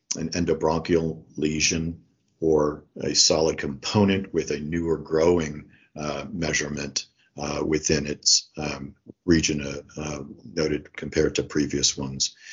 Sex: male